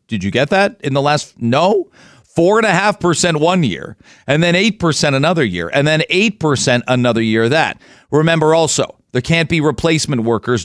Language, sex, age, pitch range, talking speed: English, male, 40-59, 125-160 Hz, 195 wpm